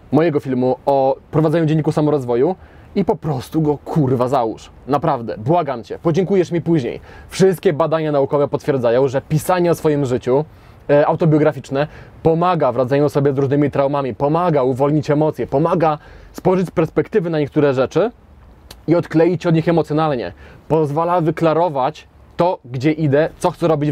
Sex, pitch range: male, 140-170 Hz